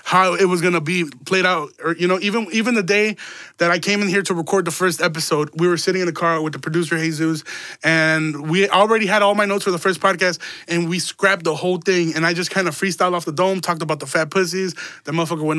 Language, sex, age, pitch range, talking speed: English, male, 20-39, 165-195 Hz, 265 wpm